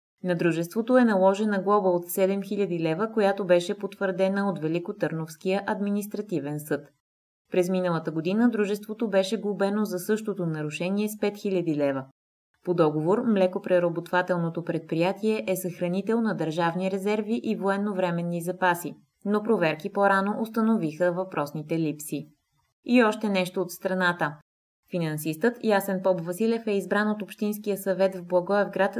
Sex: female